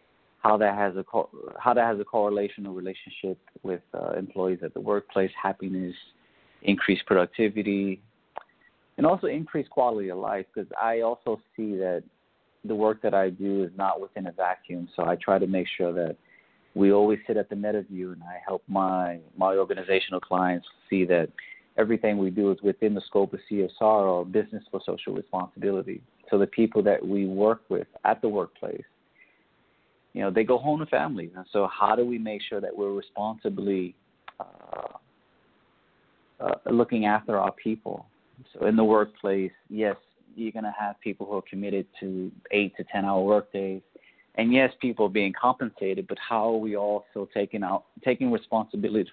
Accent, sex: American, male